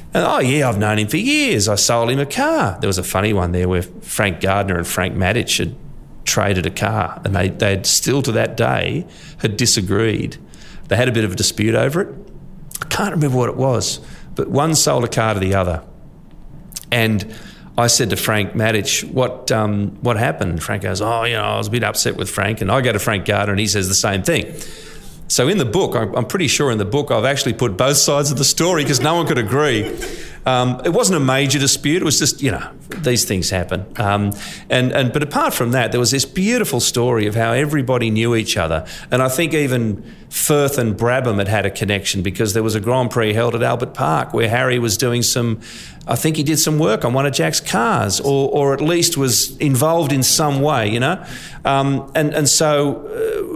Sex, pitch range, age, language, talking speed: male, 105-140 Hz, 30-49, English, 225 wpm